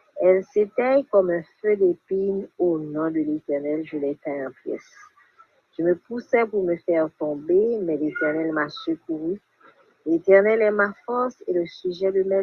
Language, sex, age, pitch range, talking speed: English, female, 50-69, 160-210 Hz, 165 wpm